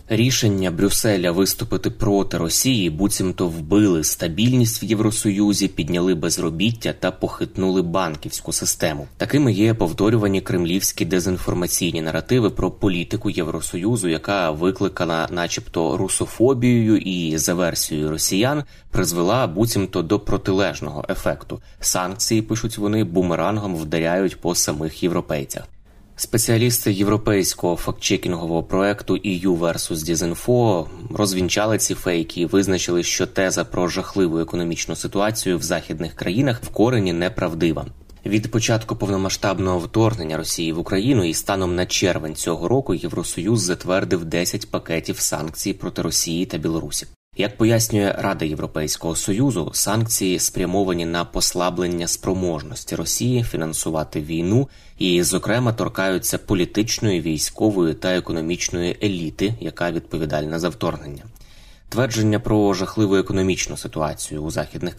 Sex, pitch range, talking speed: male, 85-105 Hz, 115 wpm